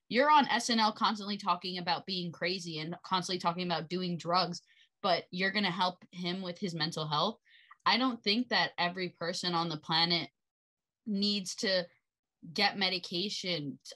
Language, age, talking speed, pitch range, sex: English, 20-39, 160 wpm, 175-210 Hz, female